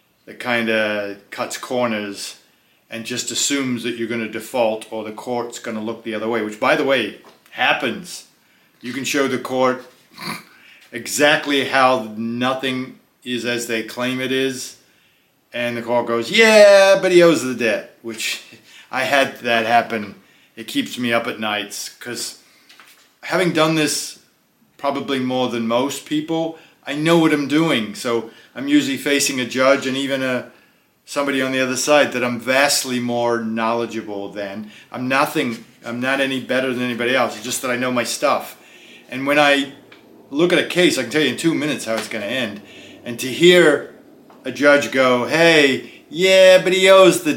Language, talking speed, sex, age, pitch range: English, 180 wpm, male, 40-59, 115-145 Hz